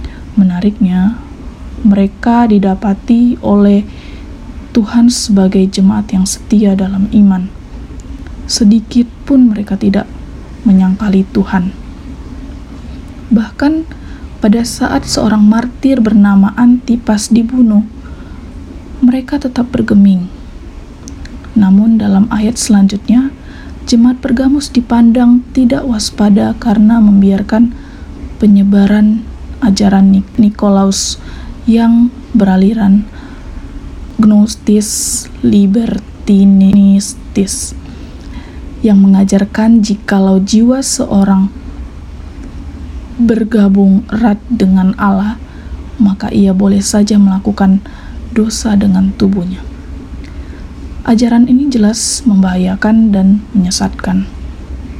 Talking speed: 75 wpm